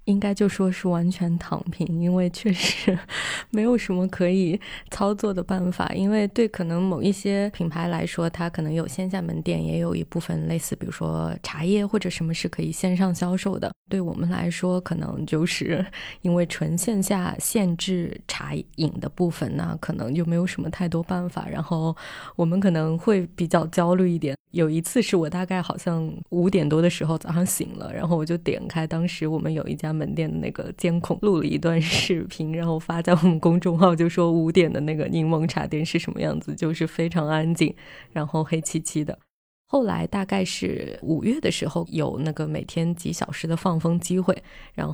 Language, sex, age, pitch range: Chinese, female, 20-39, 165-185 Hz